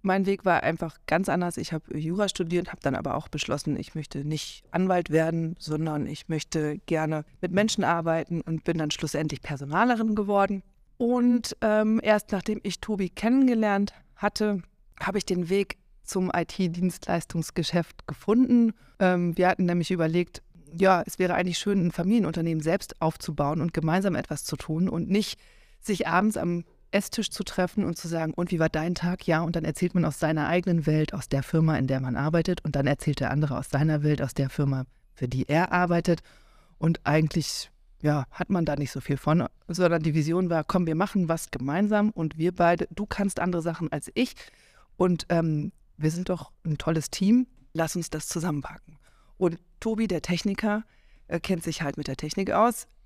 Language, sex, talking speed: German, female, 185 wpm